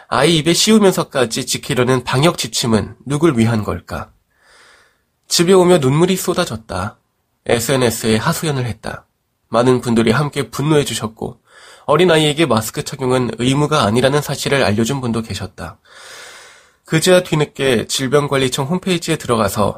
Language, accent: Korean, native